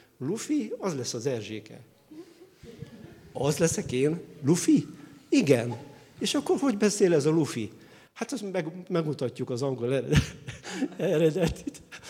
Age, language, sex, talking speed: 50-69, Hungarian, male, 120 wpm